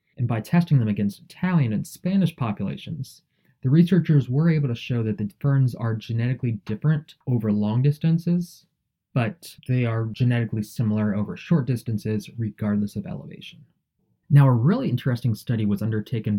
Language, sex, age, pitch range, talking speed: English, male, 20-39, 110-145 Hz, 155 wpm